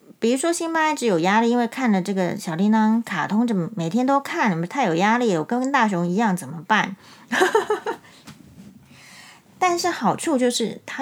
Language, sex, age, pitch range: Chinese, female, 30-49, 185-245 Hz